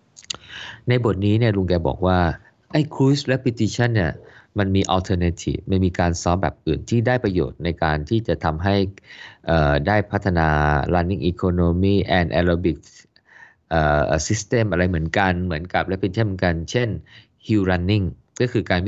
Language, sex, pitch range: Thai, male, 80-105 Hz